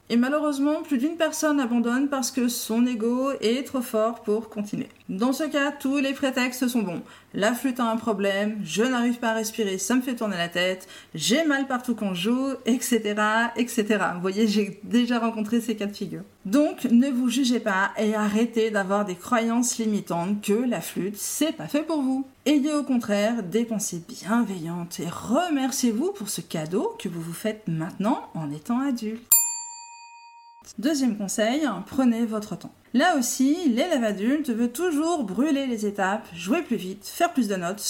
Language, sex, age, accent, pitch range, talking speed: French, female, 40-59, French, 205-265 Hz, 180 wpm